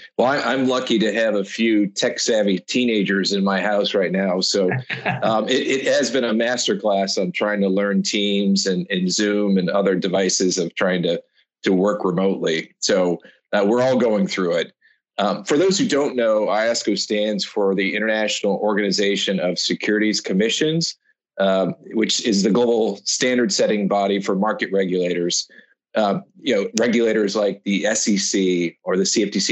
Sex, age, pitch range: male, 40-59, 95-105 Hz